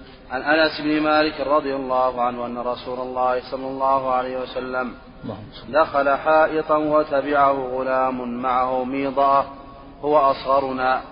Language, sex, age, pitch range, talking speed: Arabic, male, 30-49, 130-140 Hz, 120 wpm